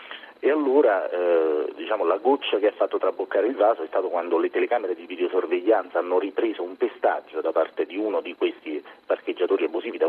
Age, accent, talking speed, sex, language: 40-59, native, 190 wpm, male, Italian